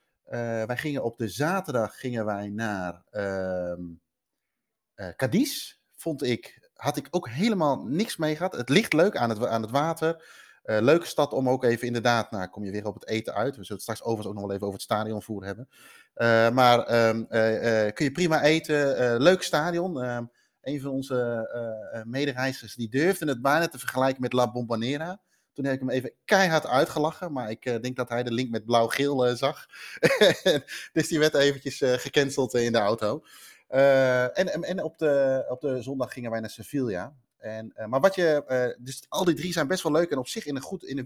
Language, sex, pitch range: Dutch, male, 115-150 Hz